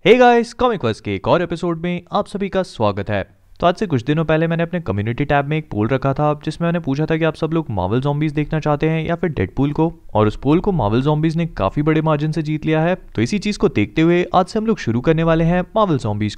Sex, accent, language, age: male, native, Hindi, 30-49